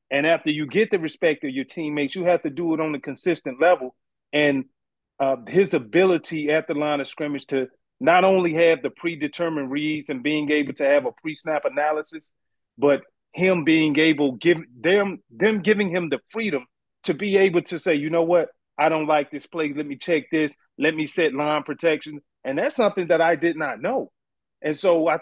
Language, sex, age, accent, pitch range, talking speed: English, male, 40-59, American, 145-175 Hz, 200 wpm